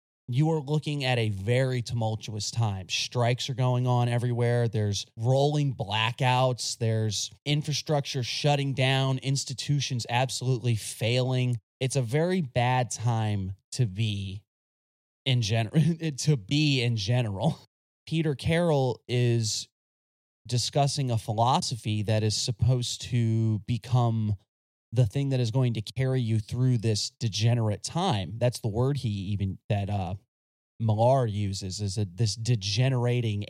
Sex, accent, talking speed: male, American, 130 wpm